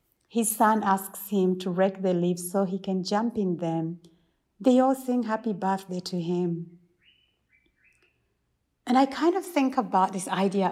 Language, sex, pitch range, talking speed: English, female, 170-195 Hz, 160 wpm